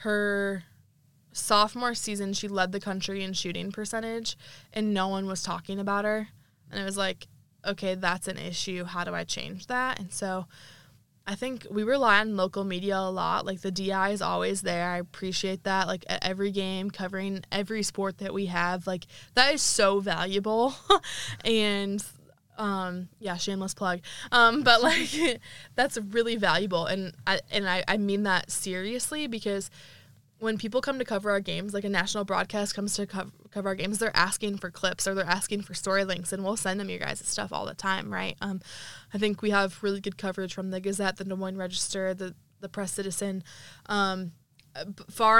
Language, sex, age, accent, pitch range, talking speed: English, female, 10-29, American, 175-200 Hz, 190 wpm